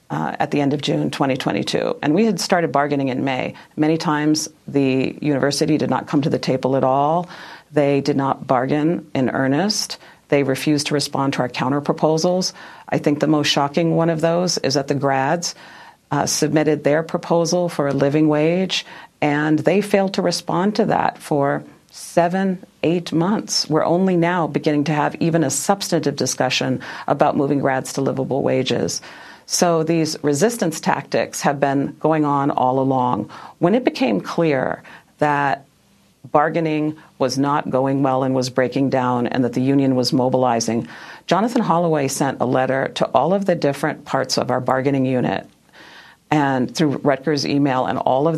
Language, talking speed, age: English, 170 wpm, 40-59